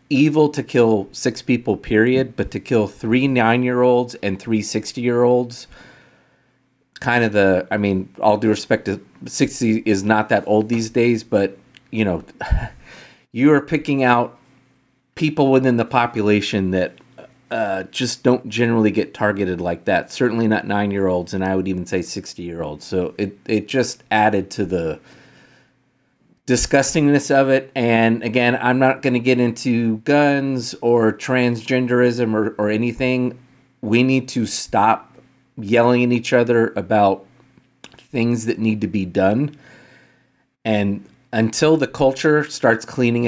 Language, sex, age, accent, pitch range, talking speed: English, male, 30-49, American, 105-130 Hz, 145 wpm